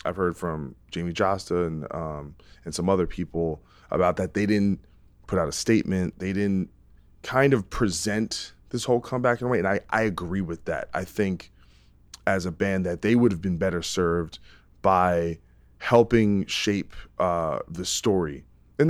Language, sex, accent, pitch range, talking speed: English, male, American, 85-110 Hz, 175 wpm